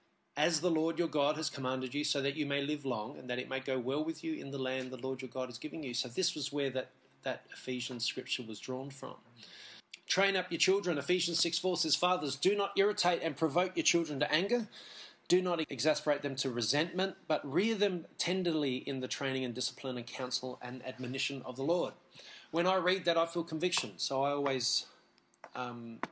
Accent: Australian